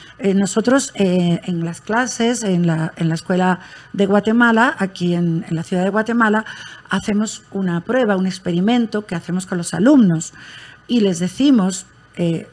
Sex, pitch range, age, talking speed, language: female, 180-230 Hz, 50-69, 165 wpm, Spanish